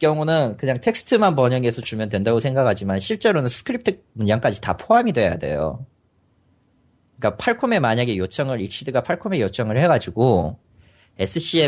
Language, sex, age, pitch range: Korean, male, 30-49, 105-155 Hz